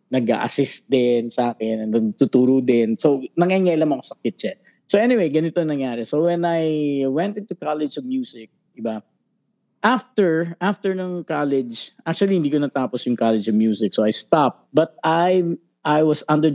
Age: 20-39